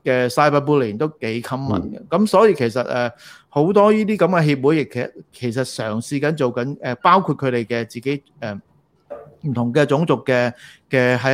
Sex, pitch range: male, 120-155 Hz